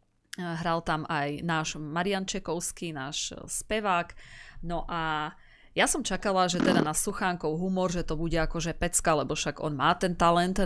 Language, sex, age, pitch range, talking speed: Slovak, female, 30-49, 150-185 Hz, 165 wpm